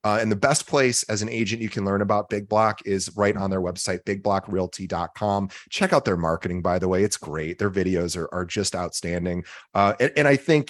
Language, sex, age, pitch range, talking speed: English, male, 30-49, 95-120 Hz, 225 wpm